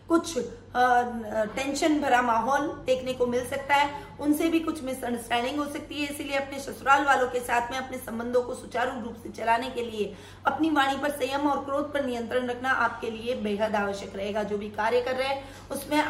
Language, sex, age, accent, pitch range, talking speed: Hindi, female, 20-39, native, 230-275 Hz, 200 wpm